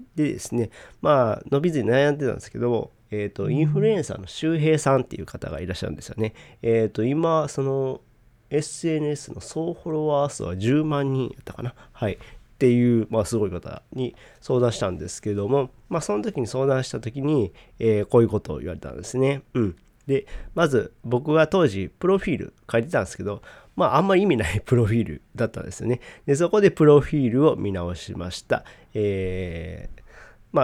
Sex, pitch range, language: male, 100-140 Hz, Japanese